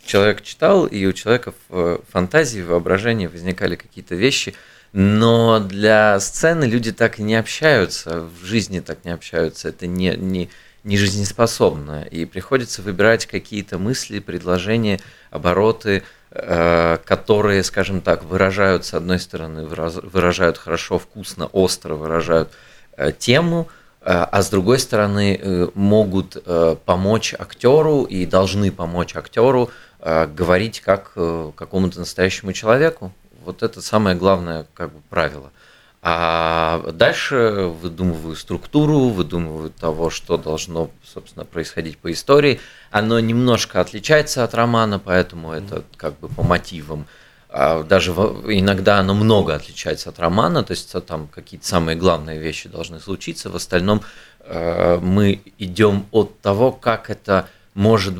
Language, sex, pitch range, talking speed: Russian, male, 85-105 Hz, 120 wpm